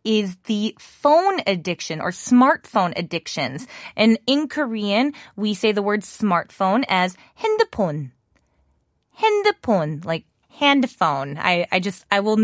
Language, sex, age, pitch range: Korean, female, 20-39, 185-275 Hz